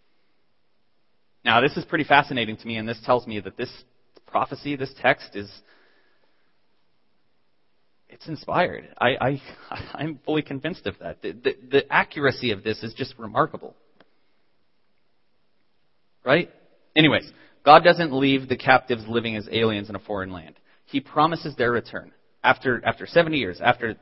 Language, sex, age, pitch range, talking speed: English, male, 30-49, 120-160 Hz, 145 wpm